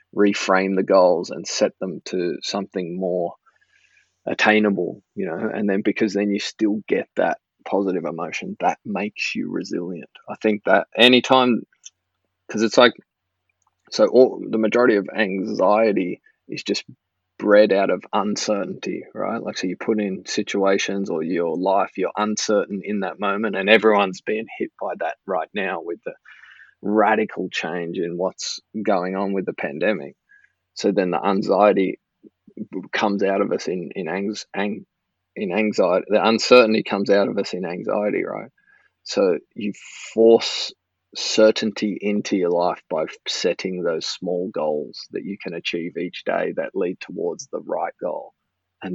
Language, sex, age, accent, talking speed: English, male, 20-39, Australian, 155 wpm